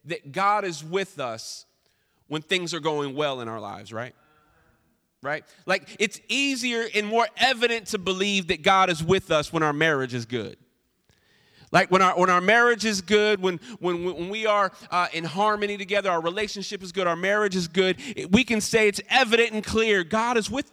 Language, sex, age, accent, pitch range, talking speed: English, male, 30-49, American, 180-230 Hz, 195 wpm